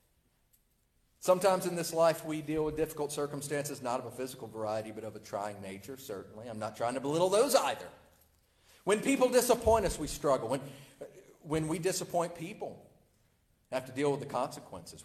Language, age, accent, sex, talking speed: English, 50-69, American, male, 180 wpm